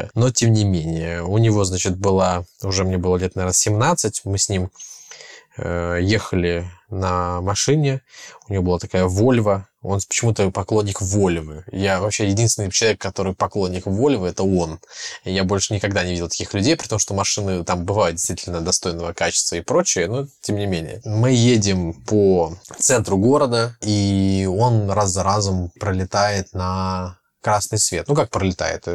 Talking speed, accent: 160 wpm, native